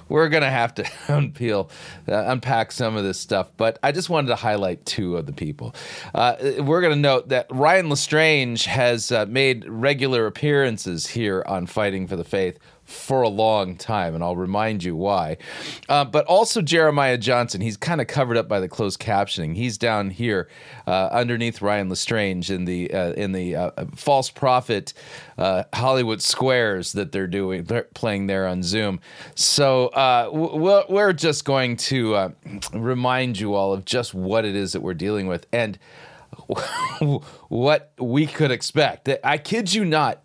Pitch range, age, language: 105-150 Hz, 40-59, English